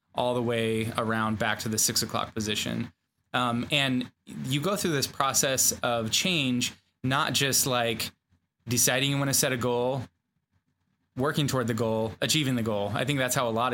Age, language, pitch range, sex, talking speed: 20-39, English, 115-130 Hz, male, 185 wpm